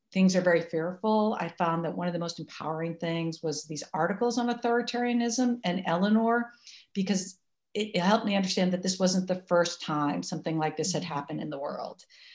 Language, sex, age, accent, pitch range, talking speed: English, female, 50-69, American, 160-200 Hz, 195 wpm